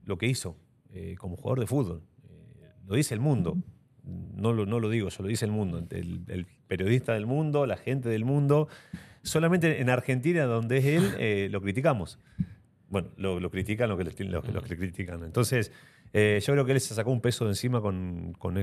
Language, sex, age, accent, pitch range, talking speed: Italian, male, 40-59, Argentinian, 100-130 Hz, 210 wpm